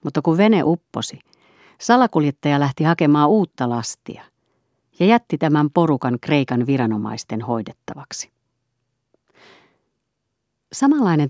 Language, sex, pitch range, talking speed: Finnish, female, 120-170 Hz, 90 wpm